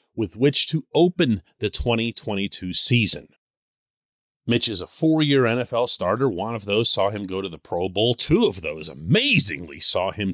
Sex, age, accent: male, 40-59, American